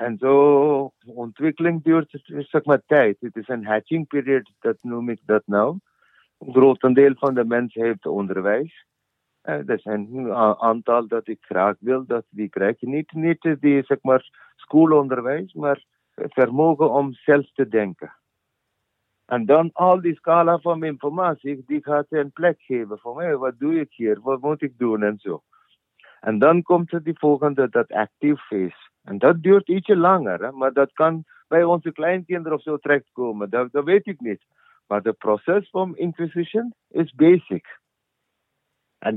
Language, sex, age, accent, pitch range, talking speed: Dutch, male, 50-69, Indian, 130-175 Hz, 165 wpm